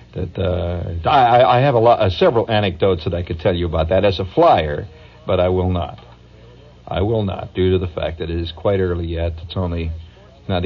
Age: 60-79